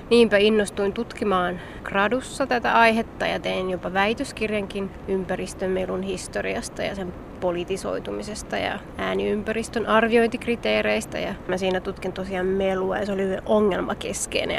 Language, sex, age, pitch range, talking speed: Finnish, female, 20-39, 190-220 Hz, 115 wpm